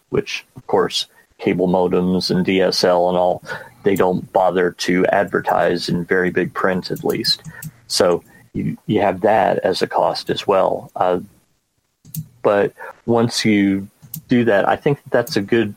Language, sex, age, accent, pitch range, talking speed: English, male, 30-49, American, 95-120 Hz, 155 wpm